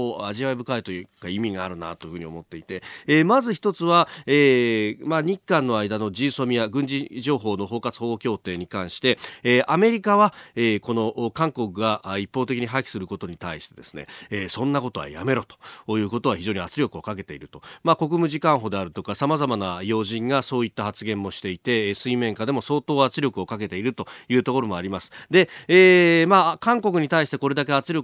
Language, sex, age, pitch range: Japanese, male, 40-59, 110-165 Hz